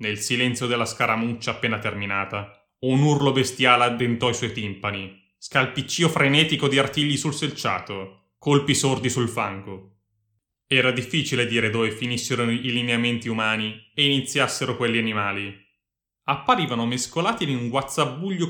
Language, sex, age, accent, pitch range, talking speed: Italian, male, 30-49, native, 105-140 Hz, 130 wpm